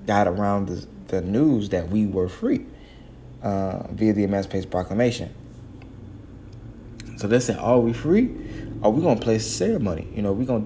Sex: male